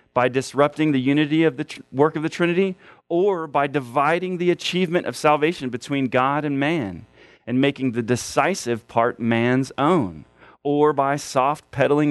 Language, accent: English, American